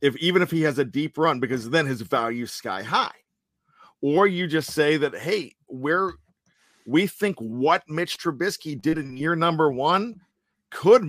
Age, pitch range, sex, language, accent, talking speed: 50-69, 145-195 Hz, male, English, American, 175 wpm